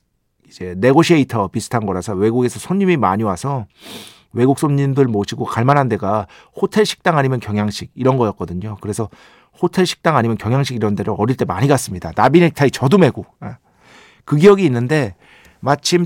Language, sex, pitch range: Korean, male, 115-175 Hz